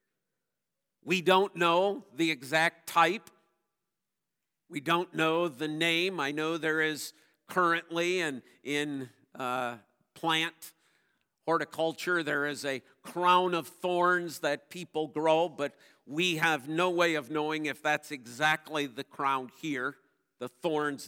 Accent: American